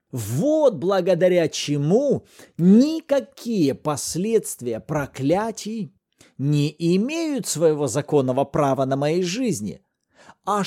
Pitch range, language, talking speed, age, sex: 145-210 Hz, Russian, 85 wpm, 50-69, male